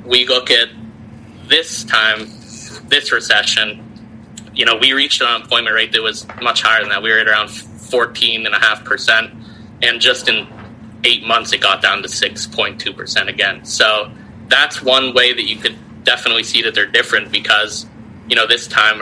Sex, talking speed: male, 165 wpm